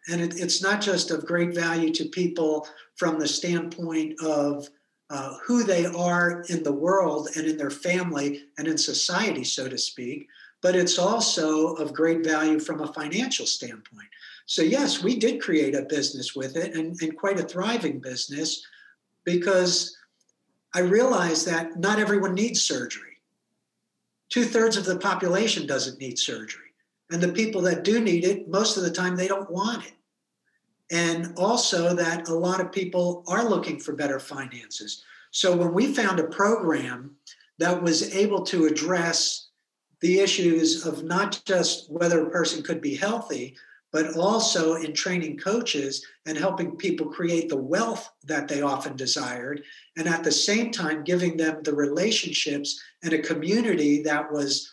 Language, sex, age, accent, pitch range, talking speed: English, male, 60-79, American, 155-185 Hz, 160 wpm